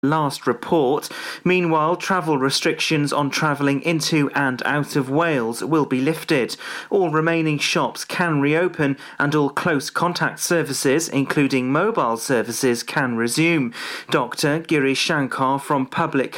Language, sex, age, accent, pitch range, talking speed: English, male, 30-49, British, 135-165 Hz, 125 wpm